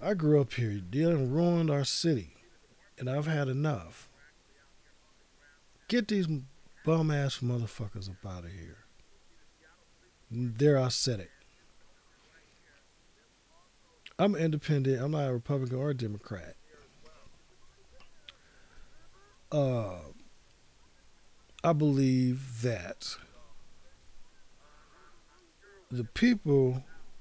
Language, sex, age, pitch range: English, male, 50-69, 110-140 Hz